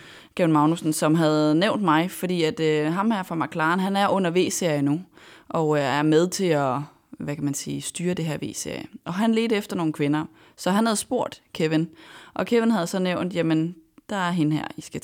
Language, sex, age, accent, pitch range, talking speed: Danish, female, 20-39, native, 155-190 Hz, 220 wpm